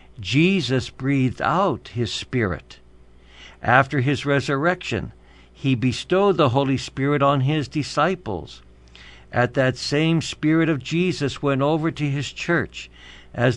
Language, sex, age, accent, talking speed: English, male, 60-79, American, 125 wpm